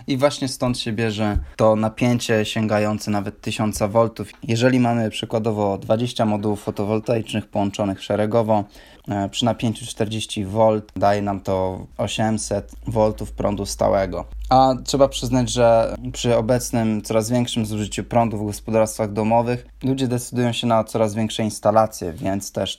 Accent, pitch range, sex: native, 105-125 Hz, male